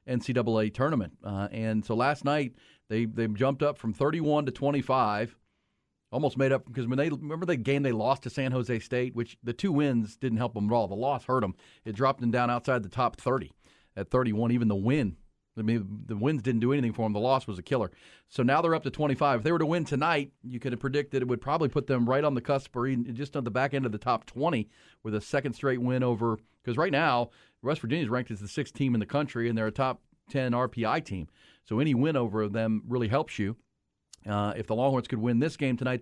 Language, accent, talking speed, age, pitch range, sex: English, American, 250 wpm, 40-59, 115-140 Hz, male